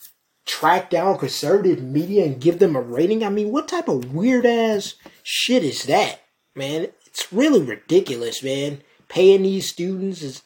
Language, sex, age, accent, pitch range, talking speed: English, male, 20-39, American, 145-210 Hz, 155 wpm